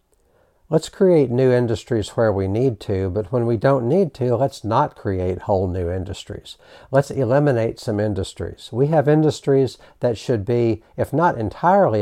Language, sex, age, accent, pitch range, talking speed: English, male, 60-79, American, 100-120 Hz, 165 wpm